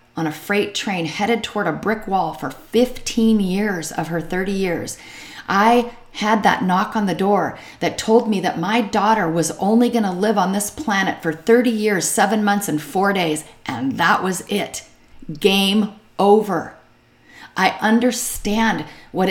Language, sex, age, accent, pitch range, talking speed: English, female, 40-59, American, 190-225 Hz, 170 wpm